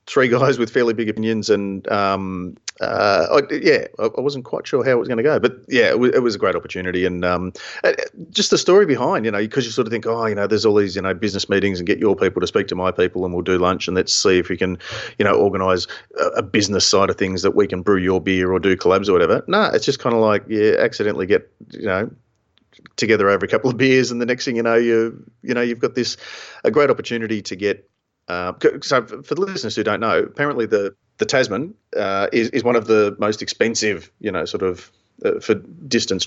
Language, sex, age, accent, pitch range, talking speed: English, male, 30-49, Australian, 95-130 Hz, 260 wpm